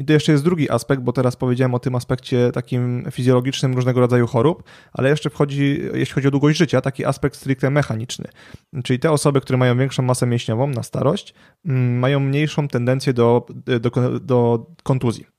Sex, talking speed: male, 180 wpm